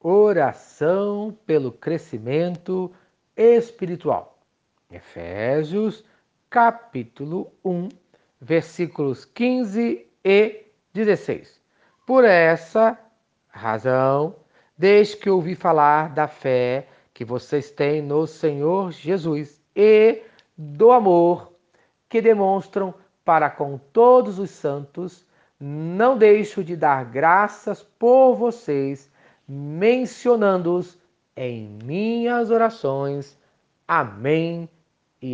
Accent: Brazilian